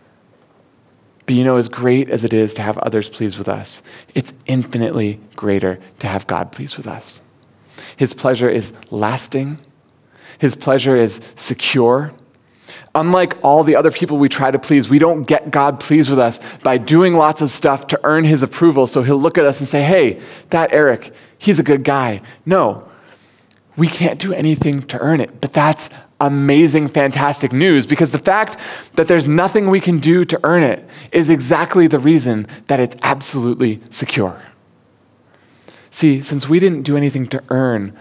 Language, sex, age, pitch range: English, male, 20-39, 120-155 Hz